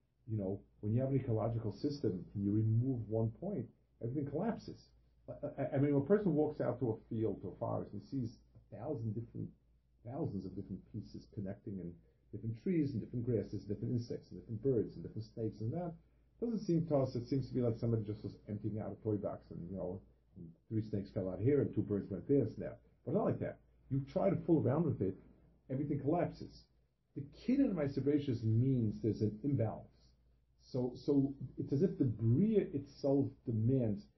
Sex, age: male, 50-69